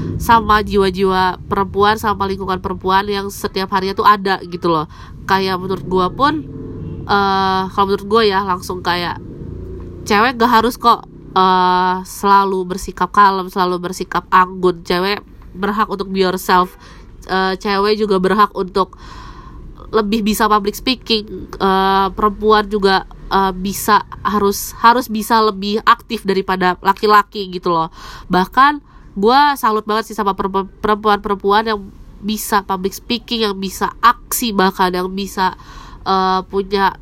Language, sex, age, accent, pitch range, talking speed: Indonesian, female, 20-39, native, 185-210 Hz, 135 wpm